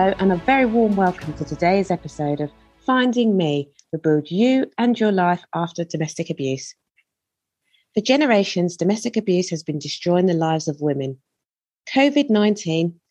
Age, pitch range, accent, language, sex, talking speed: 30-49, 155-210 Hz, British, English, female, 150 wpm